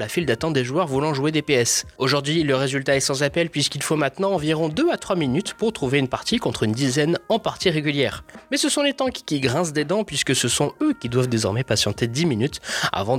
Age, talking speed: 20-39, 240 wpm